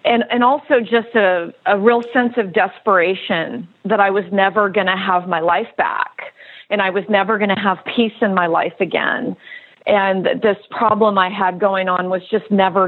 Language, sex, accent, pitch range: English, female, American, 190-235 Hz